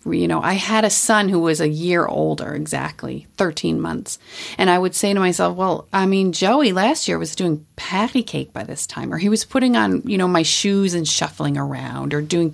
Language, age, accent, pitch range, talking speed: English, 40-59, American, 150-200 Hz, 225 wpm